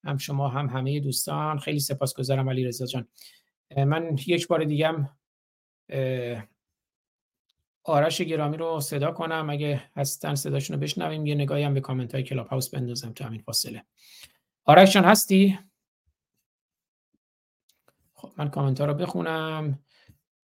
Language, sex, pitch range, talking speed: Persian, male, 135-160 Hz, 140 wpm